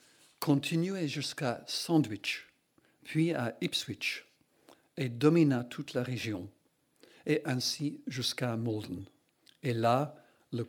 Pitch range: 120-145 Hz